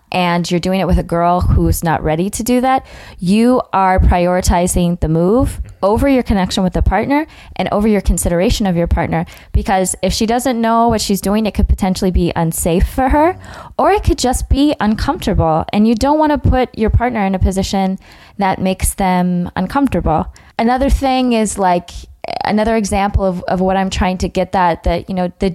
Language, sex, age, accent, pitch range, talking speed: English, female, 20-39, American, 180-215 Hz, 200 wpm